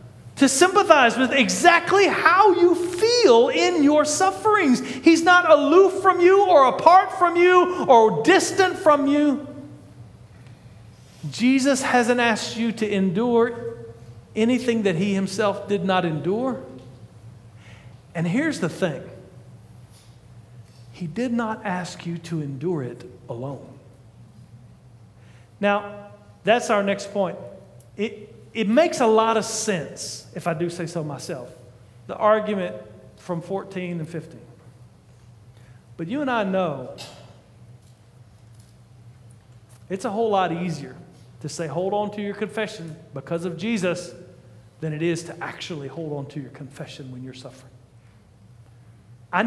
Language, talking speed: English, 130 wpm